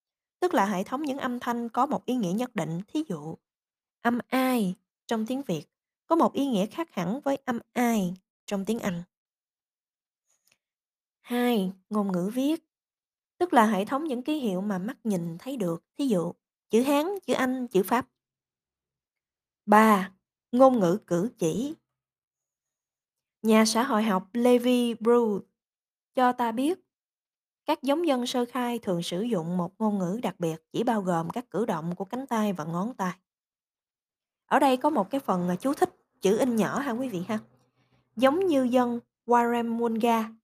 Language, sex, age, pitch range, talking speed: Vietnamese, female, 20-39, 190-255 Hz, 170 wpm